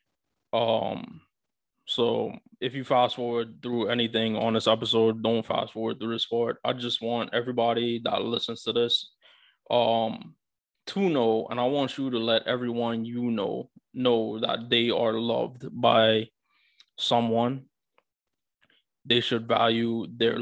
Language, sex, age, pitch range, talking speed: English, male, 20-39, 110-120 Hz, 140 wpm